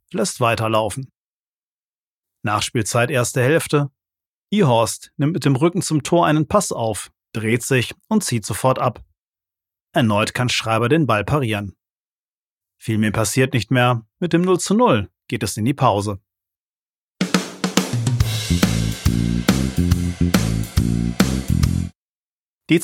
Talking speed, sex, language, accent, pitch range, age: 115 wpm, male, German, German, 110-145 Hz, 40-59